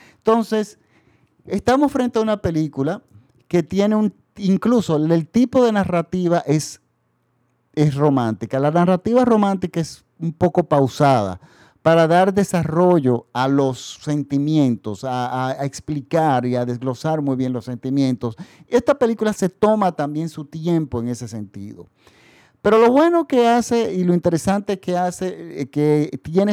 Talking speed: 140 wpm